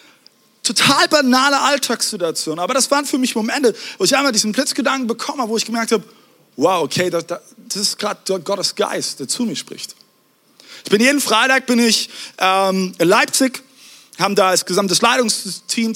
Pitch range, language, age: 185-245 Hz, German, 30-49